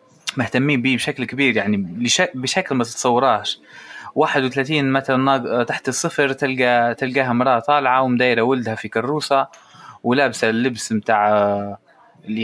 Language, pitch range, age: Arabic, 120-145 Hz, 20-39